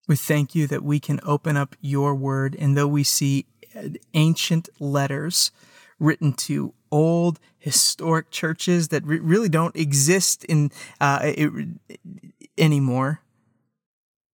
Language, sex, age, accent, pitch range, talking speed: English, male, 30-49, American, 135-155 Hz, 130 wpm